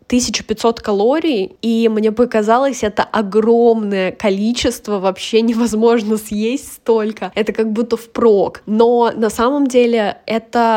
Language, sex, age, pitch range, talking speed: Russian, female, 10-29, 205-245 Hz, 115 wpm